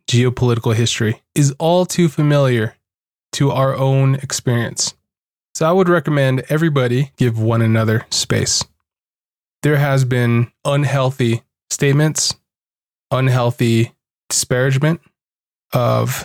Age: 20-39